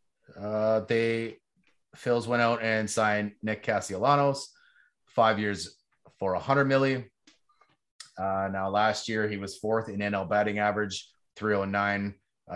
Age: 30-49